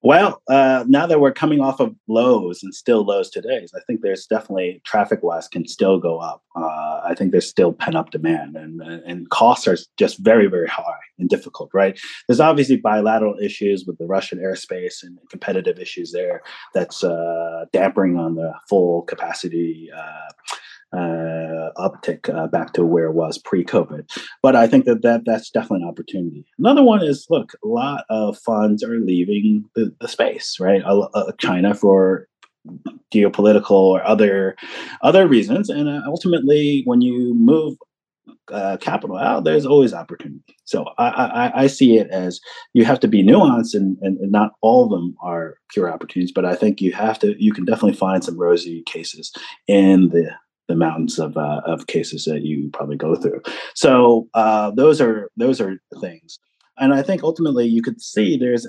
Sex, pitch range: male, 90-135 Hz